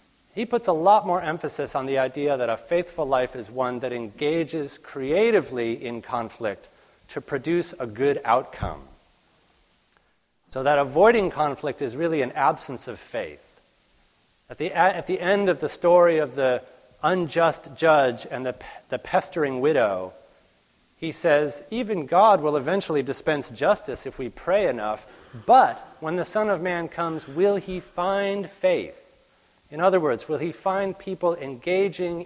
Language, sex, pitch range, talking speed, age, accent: English, male, 135-175 Hz, 155 wpm, 40-59, American